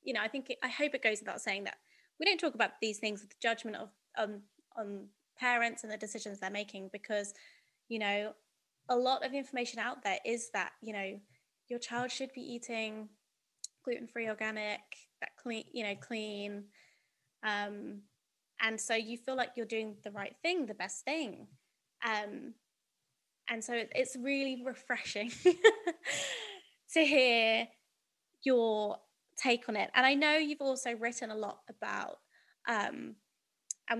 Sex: female